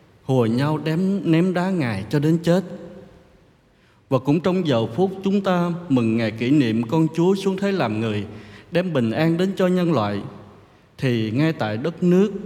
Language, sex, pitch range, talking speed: Vietnamese, male, 115-180 Hz, 185 wpm